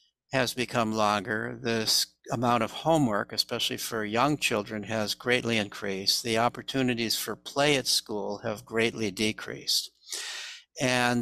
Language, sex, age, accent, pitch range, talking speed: English, male, 60-79, American, 110-135 Hz, 130 wpm